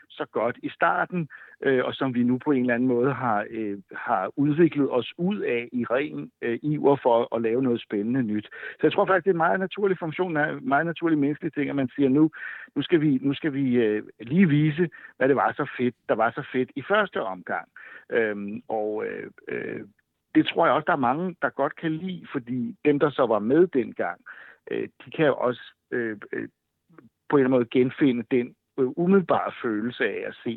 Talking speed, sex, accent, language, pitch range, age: 220 wpm, male, native, Danish, 120-155 Hz, 60-79